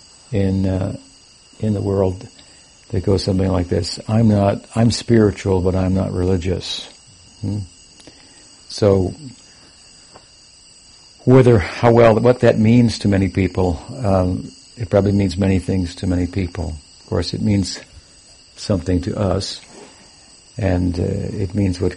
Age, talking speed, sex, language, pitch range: 60-79, 135 wpm, male, English, 90-105 Hz